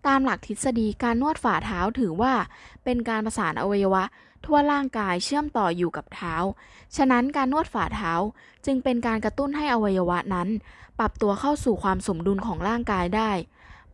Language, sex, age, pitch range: Thai, female, 10-29, 190-255 Hz